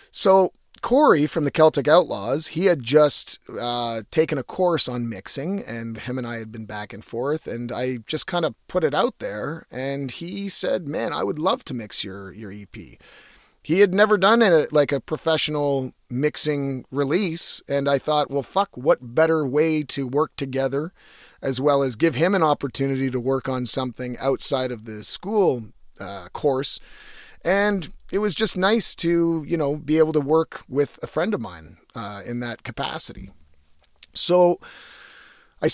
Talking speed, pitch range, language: 180 wpm, 125-165 Hz, English